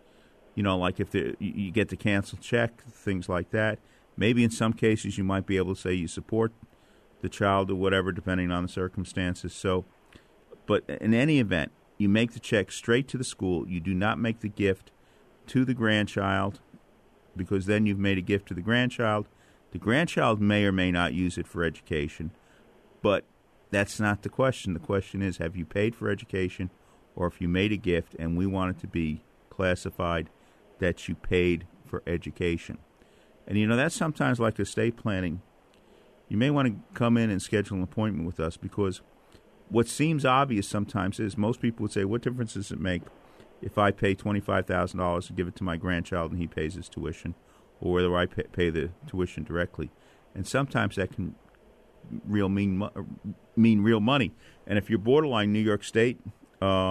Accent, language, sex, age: American, English, male, 40-59